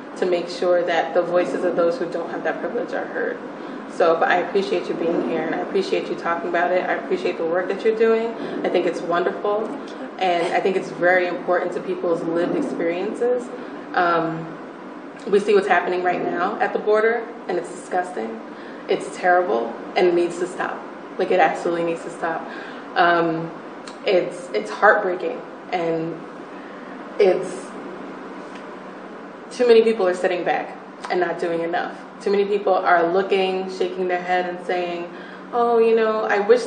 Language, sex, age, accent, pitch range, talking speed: English, female, 20-39, American, 175-205 Hz, 175 wpm